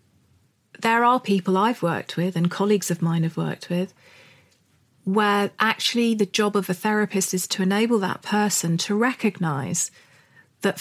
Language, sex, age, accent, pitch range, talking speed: English, female, 40-59, British, 170-205 Hz, 155 wpm